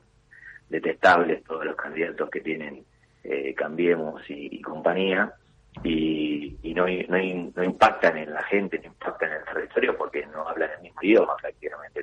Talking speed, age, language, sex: 160 wpm, 40-59, Spanish, male